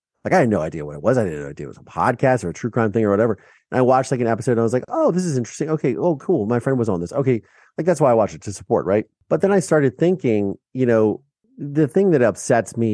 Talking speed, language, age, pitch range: 310 wpm, English, 40-59, 95-130 Hz